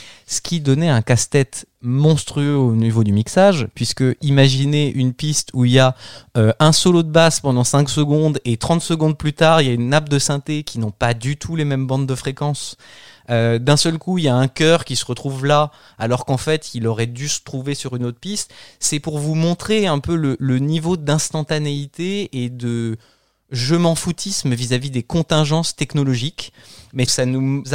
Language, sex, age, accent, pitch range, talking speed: French, male, 20-39, French, 125-155 Hz, 205 wpm